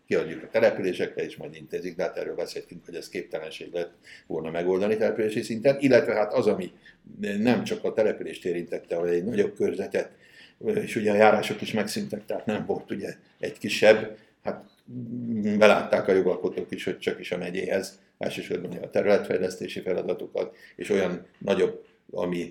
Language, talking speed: Hungarian, 165 wpm